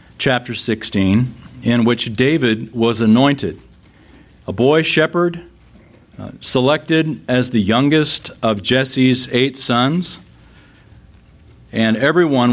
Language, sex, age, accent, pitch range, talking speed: English, male, 40-59, American, 100-140 Hz, 100 wpm